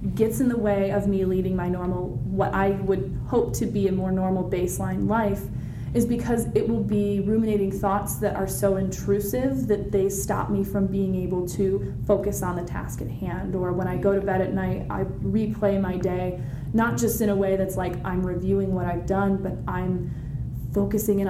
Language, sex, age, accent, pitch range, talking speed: English, female, 30-49, American, 180-205 Hz, 205 wpm